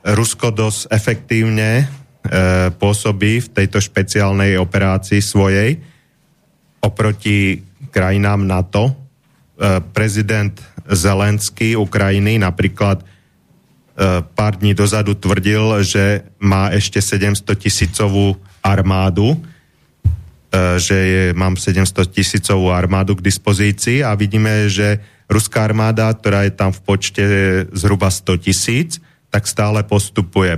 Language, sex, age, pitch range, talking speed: English, male, 30-49, 95-105 Hz, 105 wpm